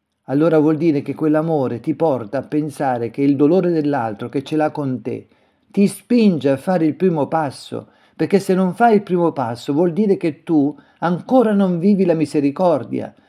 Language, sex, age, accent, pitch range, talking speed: Italian, male, 50-69, native, 130-170 Hz, 185 wpm